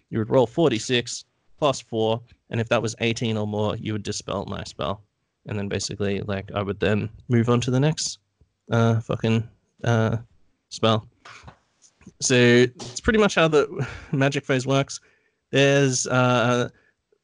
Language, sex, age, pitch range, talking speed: English, male, 30-49, 105-125 Hz, 155 wpm